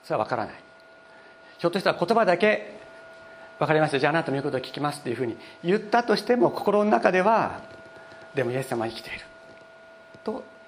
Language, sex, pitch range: Japanese, male, 125-175 Hz